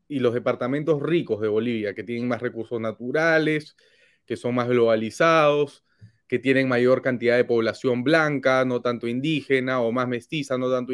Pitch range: 120-145 Hz